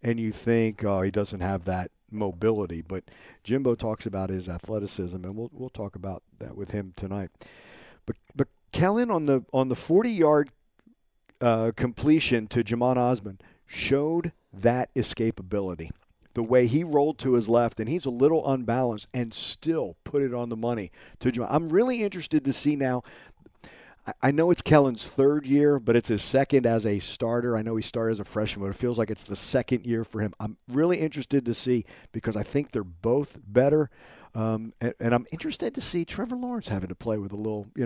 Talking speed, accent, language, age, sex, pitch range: 200 wpm, American, English, 50-69, male, 105-145 Hz